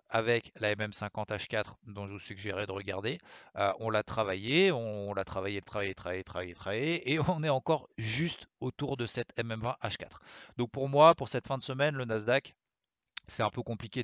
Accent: French